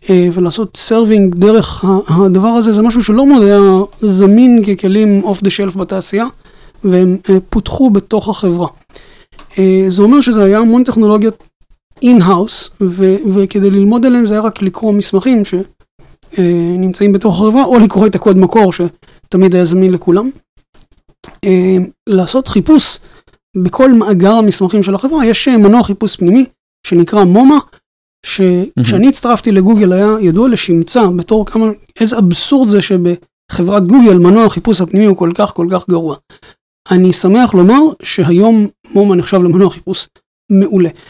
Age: 30-49